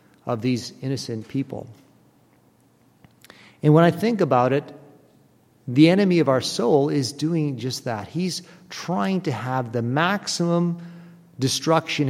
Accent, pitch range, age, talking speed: American, 135-180 Hz, 50-69, 130 wpm